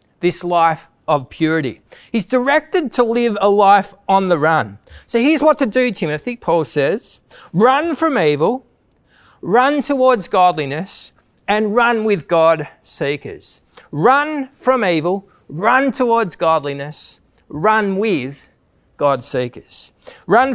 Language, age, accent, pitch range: English, 40-59, Australian, 160-245 Hz